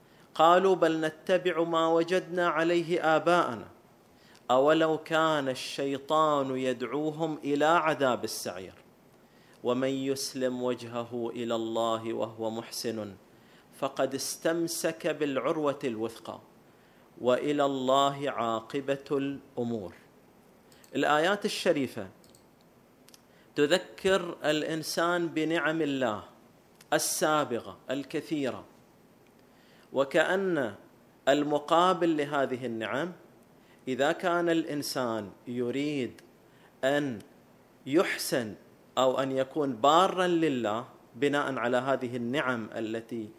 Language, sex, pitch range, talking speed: Arabic, male, 125-165 Hz, 80 wpm